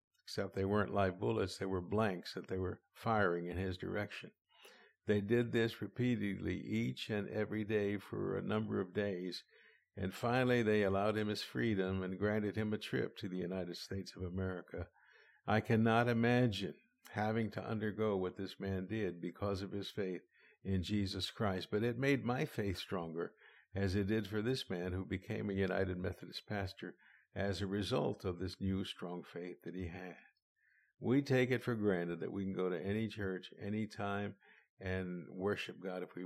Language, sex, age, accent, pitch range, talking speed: English, male, 60-79, American, 95-110 Hz, 185 wpm